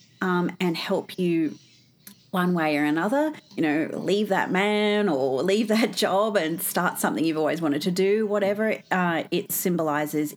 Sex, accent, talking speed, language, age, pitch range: female, Australian, 170 wpm, English, 30-49, 165-210 Hz